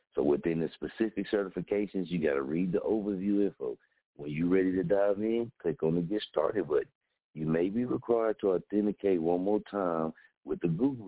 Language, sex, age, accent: English, male, 60-79, American